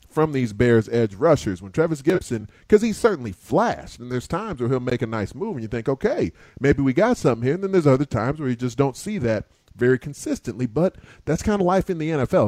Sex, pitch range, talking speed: male, 110-140 Hz, 245 wpm